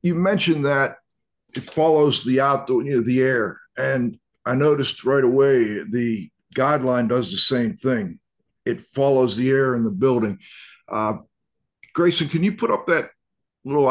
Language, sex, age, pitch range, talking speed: English, male, 50-69, 125-150 Hz, 160 wpm